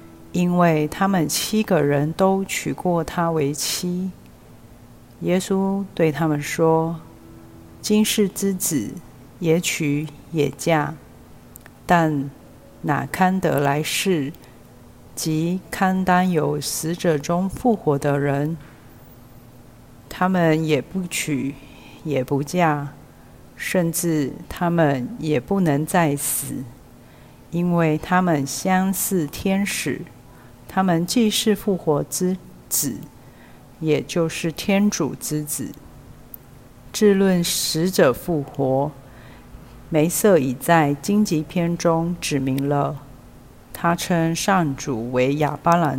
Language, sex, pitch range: Chinese, female, 135-175 Hz